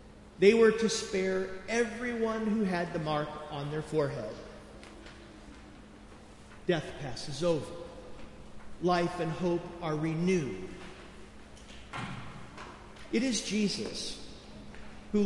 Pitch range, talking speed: 165-215 Hz, 95 wpm